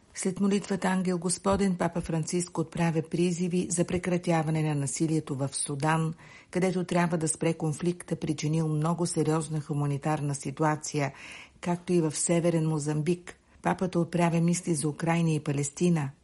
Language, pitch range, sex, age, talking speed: Bulgarian, 150-175 Hz, female, 50-69, 135 wpm